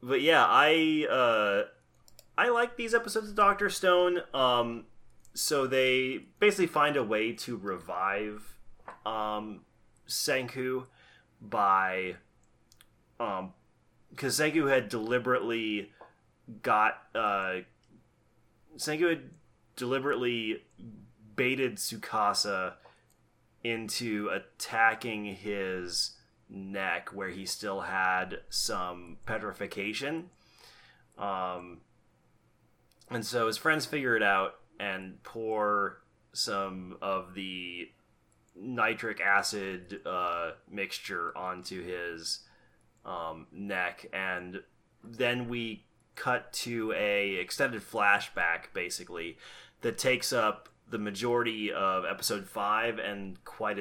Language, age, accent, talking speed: English, 30-49, American, 95 wpm